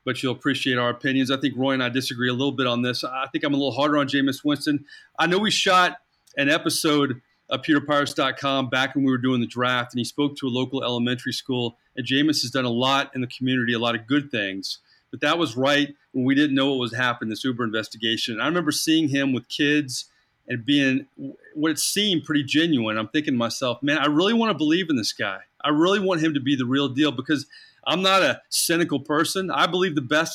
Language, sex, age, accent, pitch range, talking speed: English, male, 30-49, American, 130-155 Hz, 235 wpm